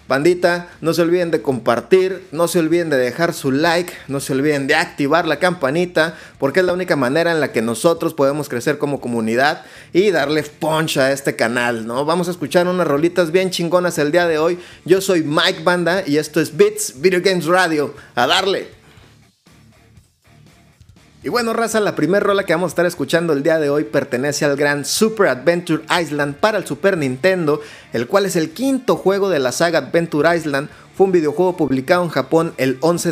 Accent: Mexican